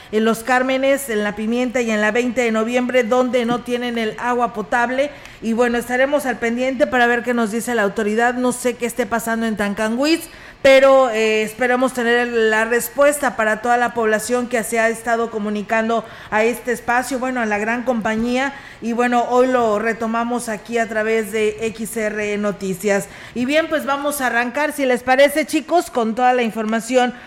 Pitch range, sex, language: 215-250 Hz, female, Spanish